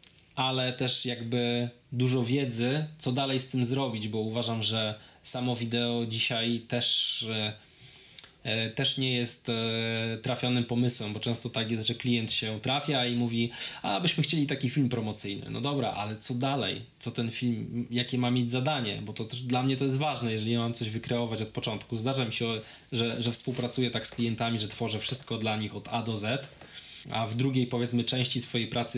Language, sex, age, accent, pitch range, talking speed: Polish, male, 20-39, native, 115-125 Hz, 185 wpm